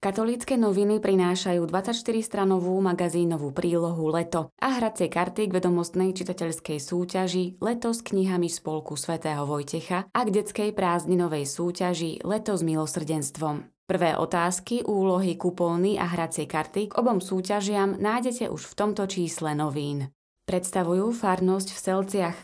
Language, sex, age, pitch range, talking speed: Slovak, female, 20-39, 165-205 Hz, 130 wpm